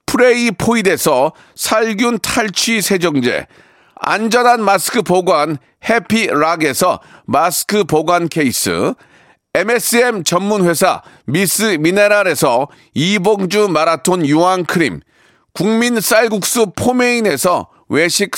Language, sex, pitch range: Korean, male, 180-230 Hz